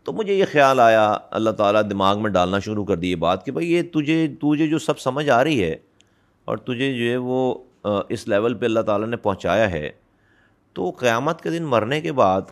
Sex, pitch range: male, 110-160 Hz